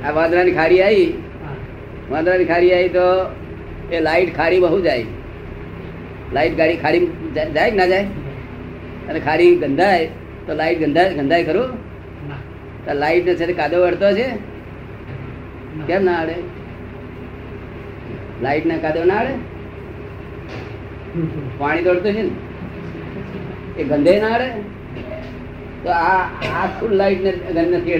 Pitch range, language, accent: 120-180 Hz, Gujarati, native